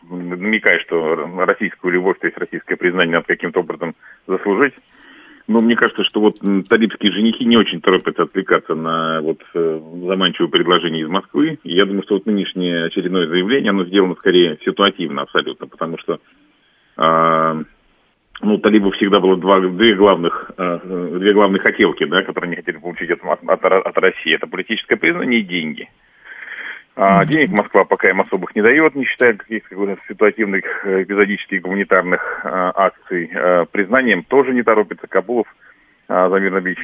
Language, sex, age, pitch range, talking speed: Russian, male, 40-59, 90-100 Hz, 155 wpm